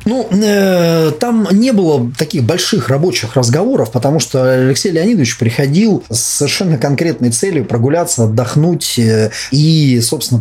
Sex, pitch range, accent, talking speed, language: male, 115-145 Hz, native, 140 wpm, Russian